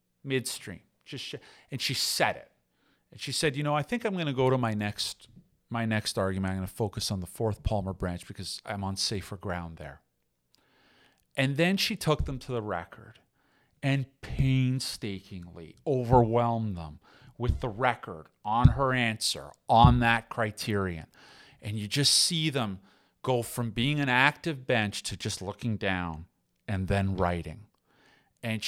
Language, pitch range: English, 90-120 Hz